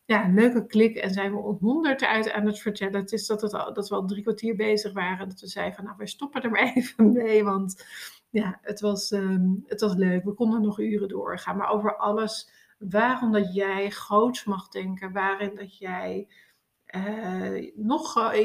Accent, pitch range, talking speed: Dutch, 195-225 Hz, 190 wpm